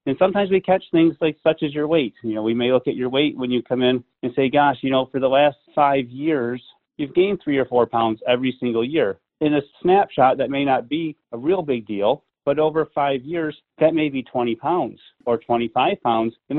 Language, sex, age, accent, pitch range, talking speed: English, male, 30-49, American, 120-155 Hz, 235 wpm